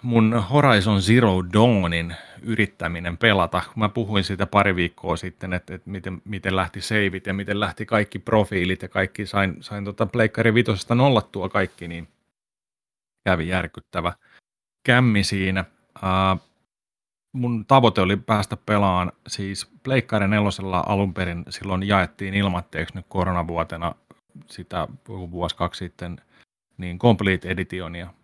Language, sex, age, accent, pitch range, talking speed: Finnish, male, 30-49, native, 90-110 Hz, 125 wpm